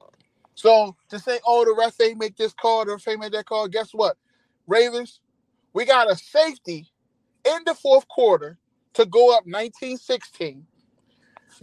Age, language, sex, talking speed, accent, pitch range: 30-49, English, male, 155 wpm, American, 200-265 Hz